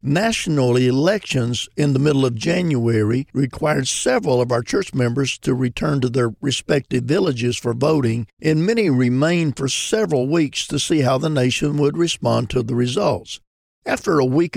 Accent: American